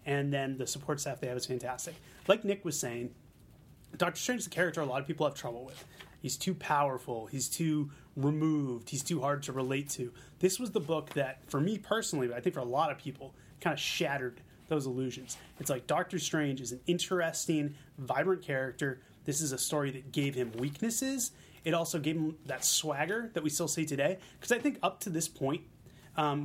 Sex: male